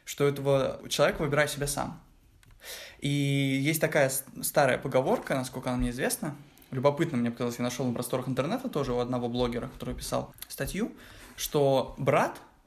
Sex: male